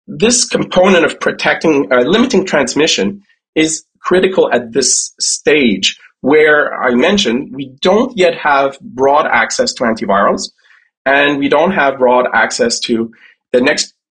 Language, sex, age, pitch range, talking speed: English, male, 30-49, 125-190 Hz, 135 wpm